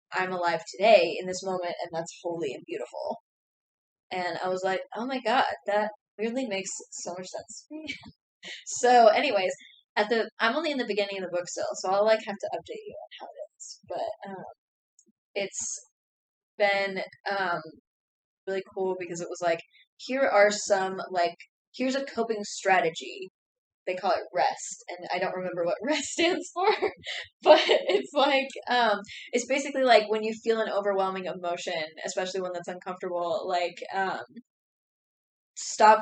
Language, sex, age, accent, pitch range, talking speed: English, female, 10-29, American, 185-230 Hz, 165 wpm